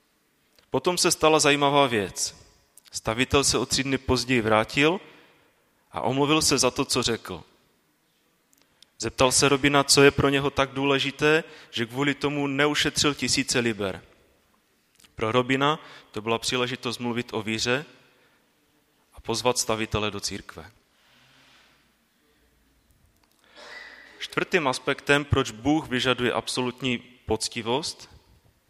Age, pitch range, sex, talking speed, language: 30-49, 115-140 Hz, male, 115 wpm, Czech